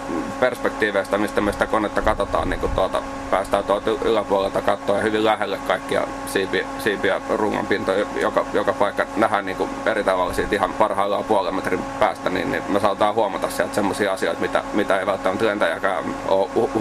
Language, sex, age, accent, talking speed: Finnish, male, 30-49, native, 165 wpm